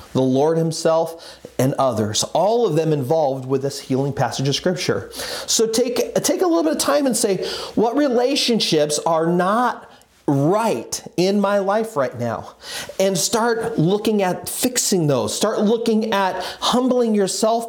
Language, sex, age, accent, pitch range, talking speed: English, male, 40-59, American, 150-225 Hz, 155 wpm